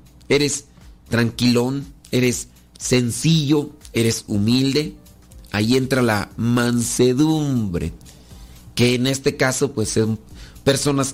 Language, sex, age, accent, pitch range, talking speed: Spanish, male, 40-59, Mexican, 105-150 Hz, 90 wpm